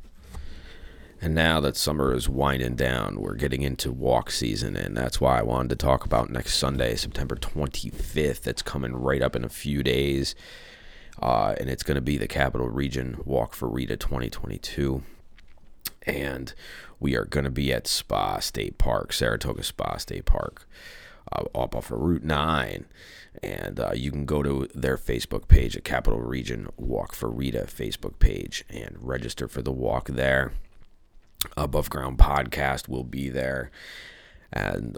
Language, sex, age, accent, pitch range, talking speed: English, male, 30-49, American, 65-75 Hz, 165 wpm